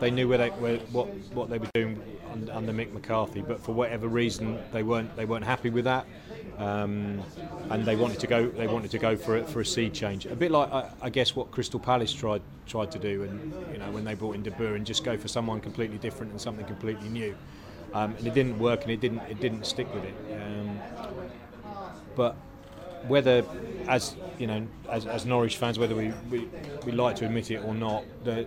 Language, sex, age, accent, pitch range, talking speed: English, male, 30-49, British, 105-120 Hz, 225 wpm